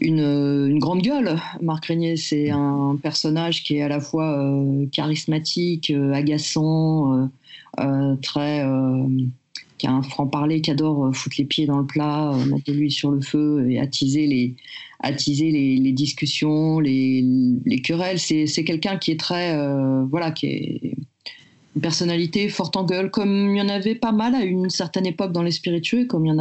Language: French